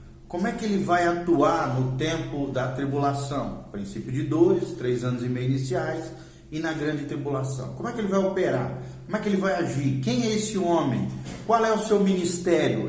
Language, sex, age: Portuguese, male, 40-59